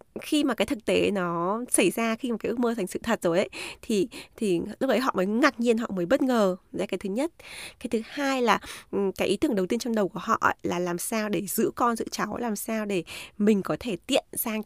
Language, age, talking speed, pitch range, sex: Vietnamese, 20-39, 260 wpm, 185-245 Hz, female